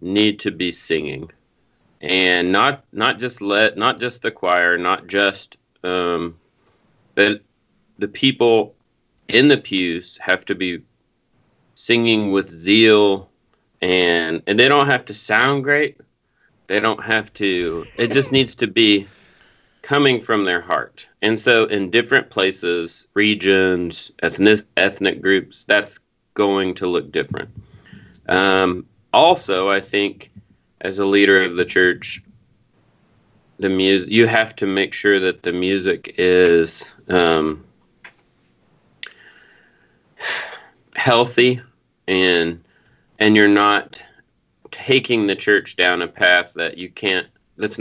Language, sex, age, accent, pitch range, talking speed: English, male, 30-49, American, 90-105 Hz, 125 wpm